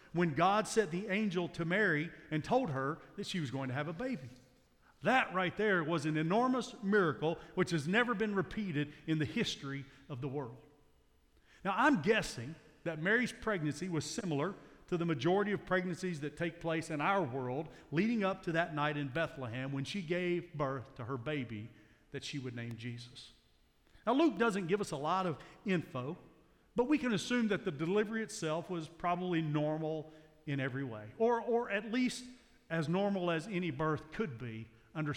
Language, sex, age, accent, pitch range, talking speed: English, male, 50-69, American, 150-205 Hz, 185 wpm